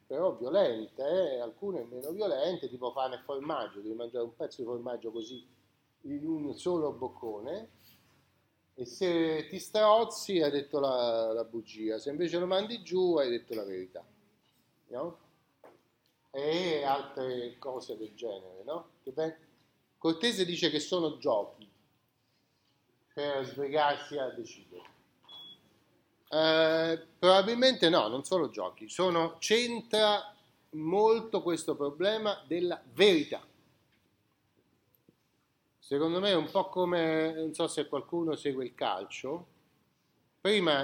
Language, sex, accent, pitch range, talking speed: Italian, male, native, 135-185 Hz, 120 wpm